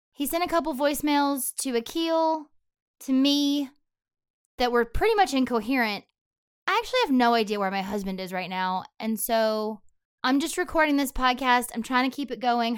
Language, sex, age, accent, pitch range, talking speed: English, female, 20-39, American, 220-290 Hz, 180 wpm